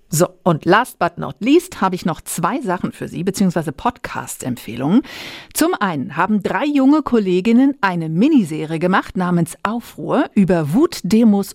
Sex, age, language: female, 50-69, German